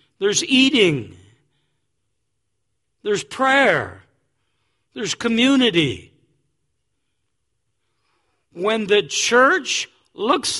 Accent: American